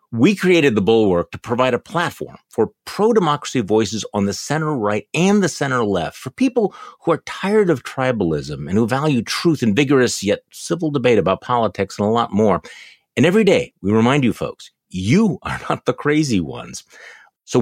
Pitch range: 100-135 Hz